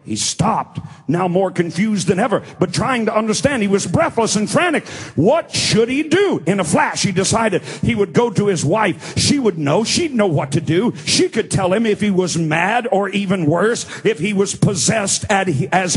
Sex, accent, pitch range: male, American, 185-230 Hz